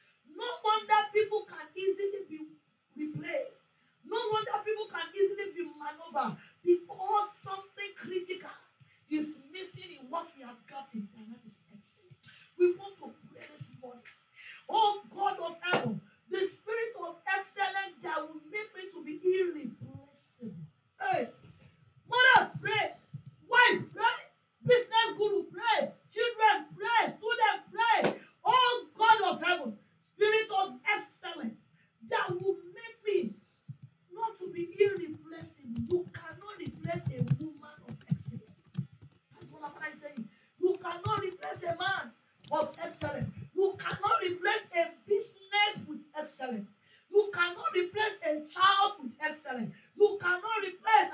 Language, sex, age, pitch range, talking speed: English, female, 40-59, 310-420 Hz, 130 wpm